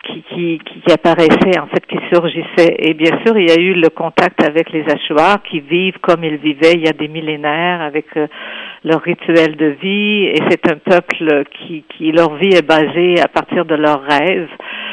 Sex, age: female, 50-69